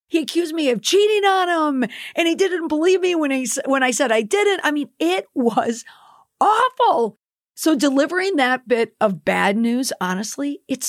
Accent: American